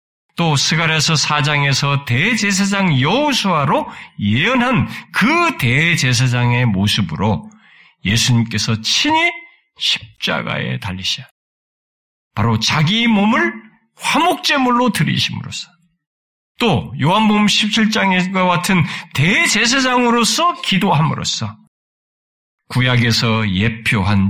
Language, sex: Korean, male